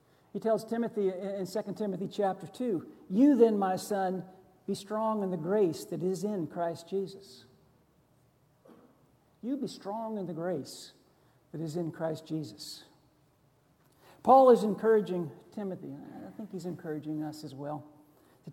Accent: American